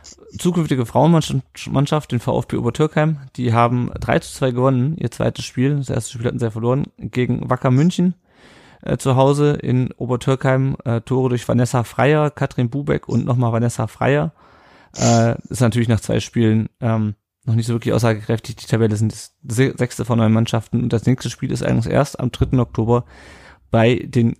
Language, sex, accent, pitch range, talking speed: German, male, German, 115-135 Hz, 175 wpm